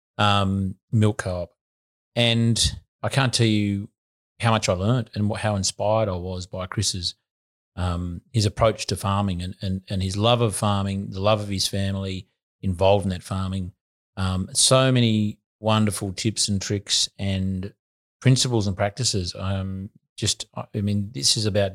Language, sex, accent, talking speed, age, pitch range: English, male, Australian, 165 wpm, 30-49, 95-110 Hz